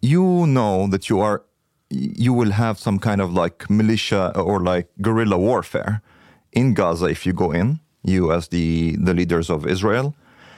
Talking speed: 170 wpm